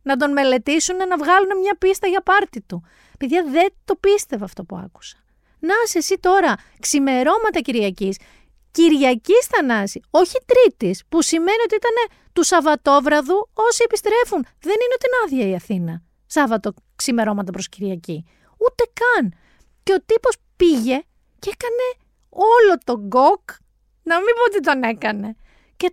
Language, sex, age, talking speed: Greek, female, 40-59, 150 wpm